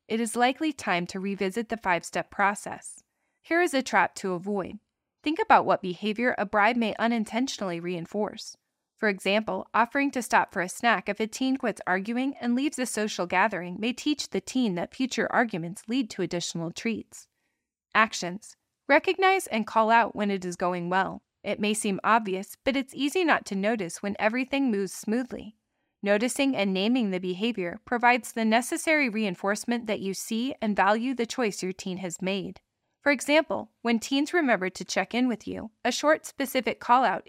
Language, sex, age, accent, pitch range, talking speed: English, female, 20-39, American, 195-255 Hz, 180 wpm